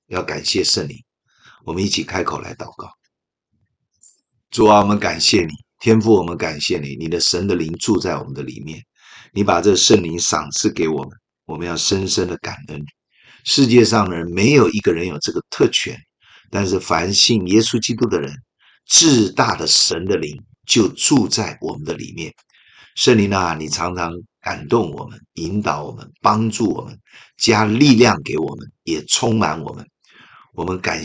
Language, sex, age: Chinese, male, 50-69